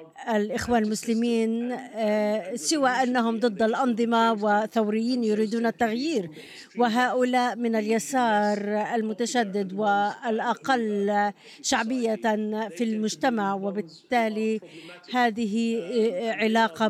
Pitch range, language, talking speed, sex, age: 210-240 Hz, Arabic, 70 wpm, female, 50-69